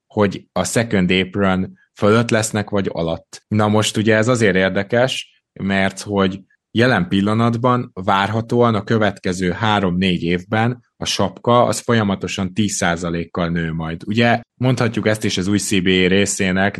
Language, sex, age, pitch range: Hungarian, male, 20-39, 85-105 Hz